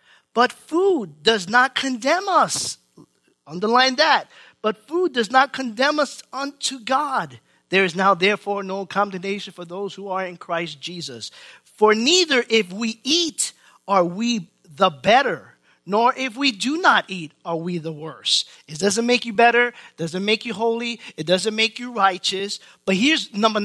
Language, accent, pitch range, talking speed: English, American, 195-280 Hz, 165 wpm